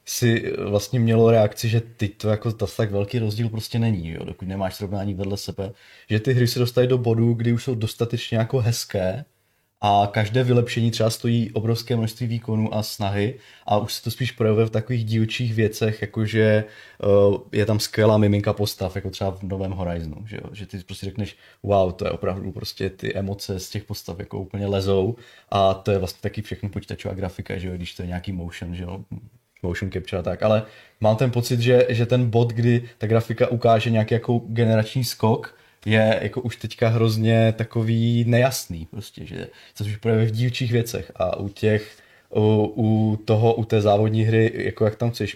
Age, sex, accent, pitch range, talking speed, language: 20-39, male, native, 100-115 Hz, 195 wpm, Czech